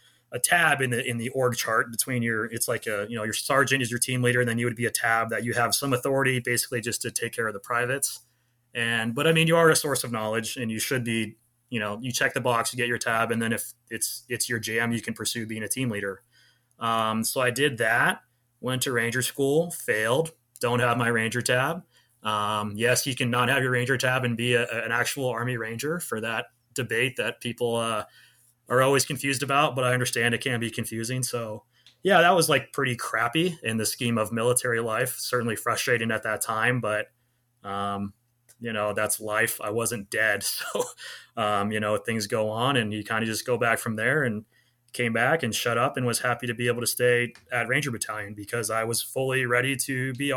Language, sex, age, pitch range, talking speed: English, male, 20-39, 115-125 Hz, 230 wpm